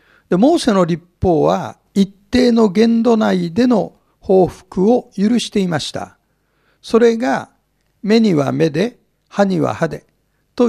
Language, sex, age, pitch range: Japanese, male, 60-79, 155-230 Hz